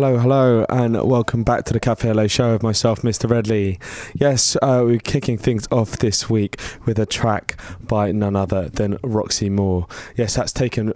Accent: British